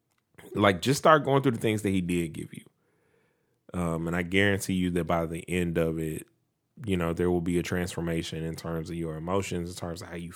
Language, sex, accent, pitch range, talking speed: English, male, American, 85-105 Hz, 230 wpm